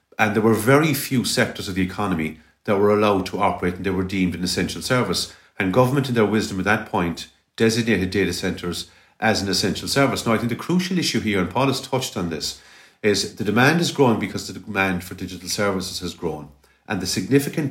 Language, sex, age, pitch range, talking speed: English, male, 50-69, 95-115 Hz, 220 wpm